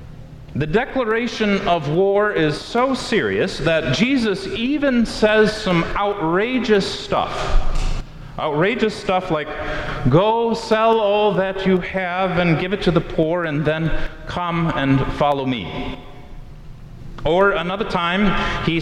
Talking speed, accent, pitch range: 125 wpm, American, 135-200 Hz